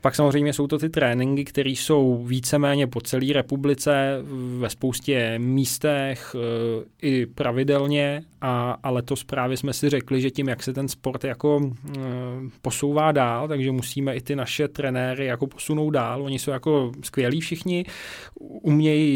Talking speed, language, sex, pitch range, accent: 145 wpm, Czech, male, 120-140 Hz, native